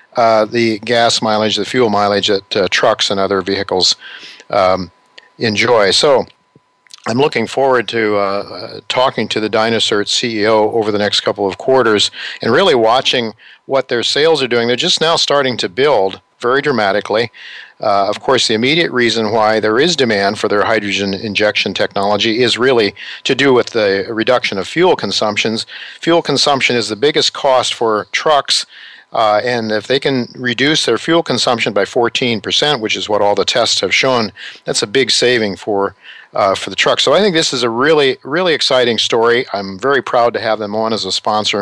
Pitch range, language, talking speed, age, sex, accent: 105-130 Hz, English, 185 wpm, 50-69, male, American